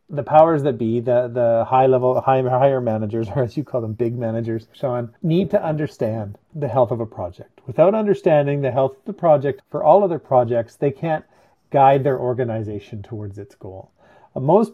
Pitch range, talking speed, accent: 120-160 Hz, 190 wpm, American